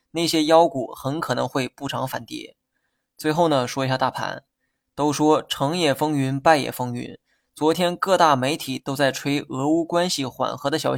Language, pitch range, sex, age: Chinese, 135-160 Hz, male, 20-39